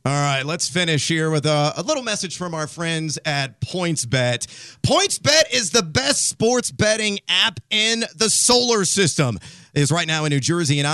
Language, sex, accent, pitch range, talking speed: English, male, American, 135-185 Hz, 185 wpm